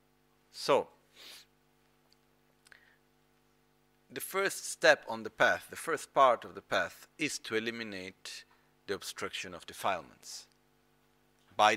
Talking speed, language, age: 105 wpm, Italian, 50-69